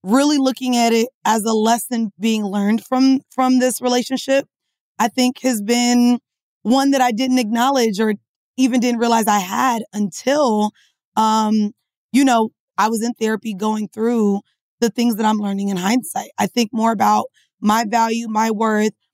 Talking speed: 165 wpm